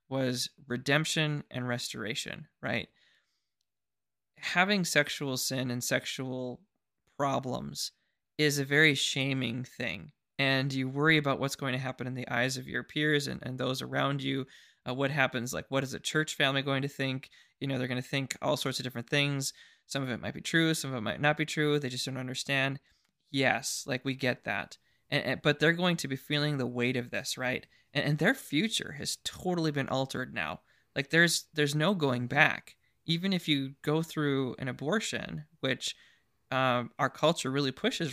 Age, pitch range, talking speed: 20-39, 130-150 Hz, 190 wpm